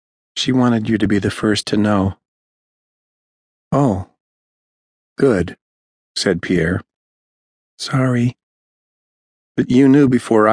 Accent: American